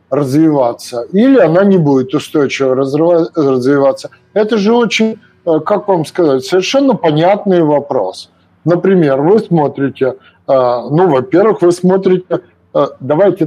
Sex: male